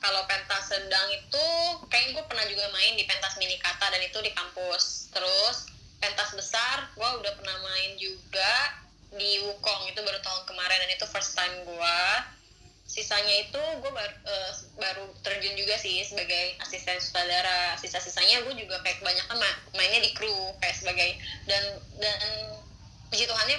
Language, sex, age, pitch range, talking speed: Indonesian, female, 20-39, 185-215 Hz, 160 wpm